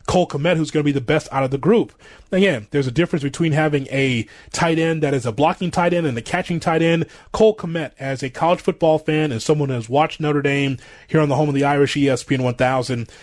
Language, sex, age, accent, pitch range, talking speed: English, male, 30-49, American, 140-175 Hz, 250 wpm